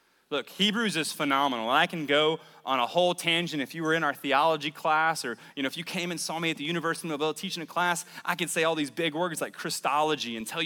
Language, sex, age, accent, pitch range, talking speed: English, male, 30-49, American, 140-185 Hz, 265 wpm